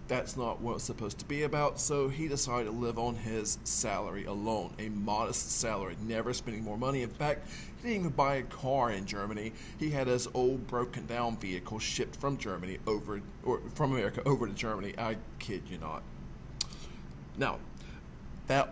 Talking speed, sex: 185 wpm, male